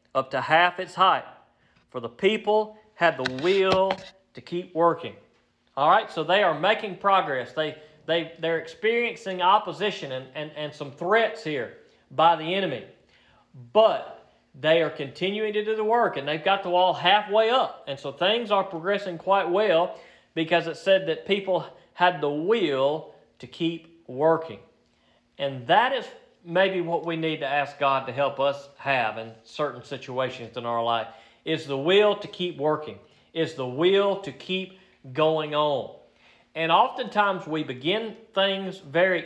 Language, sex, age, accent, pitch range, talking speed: English, male, 40-59, American, 140-190 Hz, 165 wpm